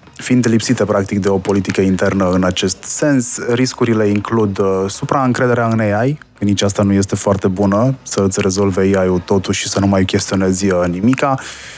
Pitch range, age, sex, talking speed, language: 95-115 Hz, 20-39, male, 165 wpm, Romanian